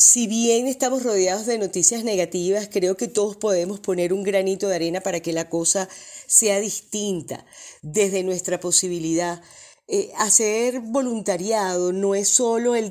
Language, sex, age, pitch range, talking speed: Spanish, female, 30-49, 180-210 Hz, 150 wpm